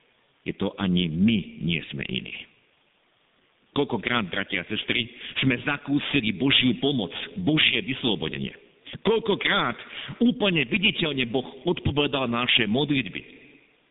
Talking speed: 105 wpm